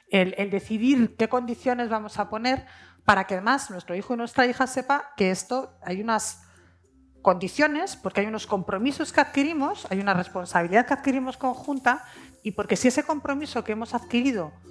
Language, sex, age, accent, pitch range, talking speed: Spanish, female, 40-59, Spanish, 190-255 Hz, 170 wpm